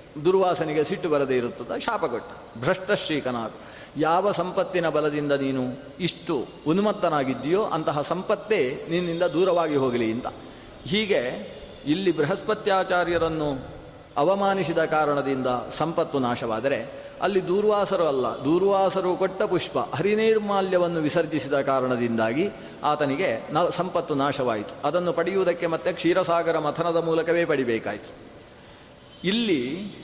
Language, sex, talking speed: Kannada, male, 90 wpm